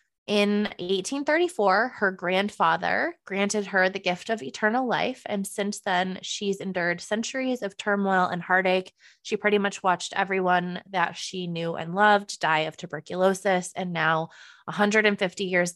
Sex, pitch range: female, 185-215 Hz